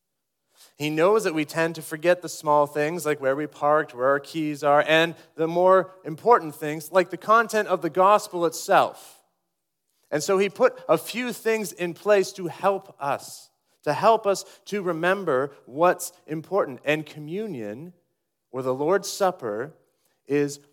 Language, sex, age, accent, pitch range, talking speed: English, male, 30-49, American, 145-190 Hz, 160 wpm